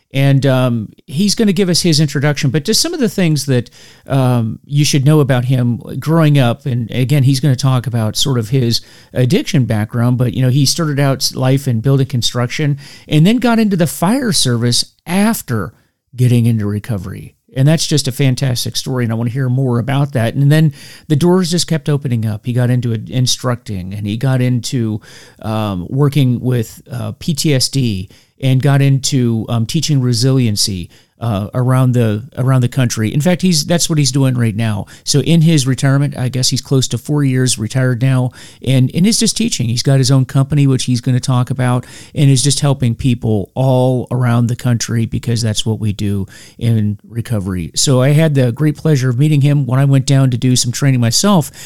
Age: 40-59